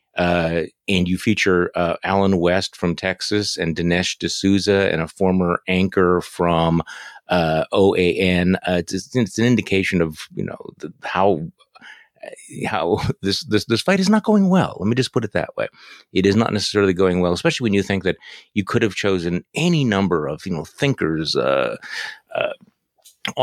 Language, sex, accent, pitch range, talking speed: English, male, American, 90-110 Hz, 170 wpm